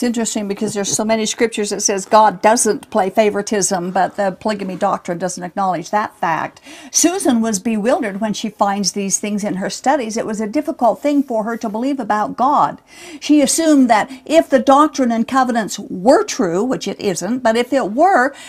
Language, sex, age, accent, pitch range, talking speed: English, female, 50-69, American, 215-290 Hz, 195 wpm